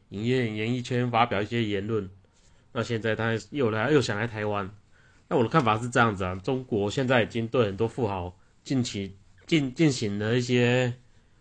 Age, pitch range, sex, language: 30-49, 100-120 Hz, male, Chinese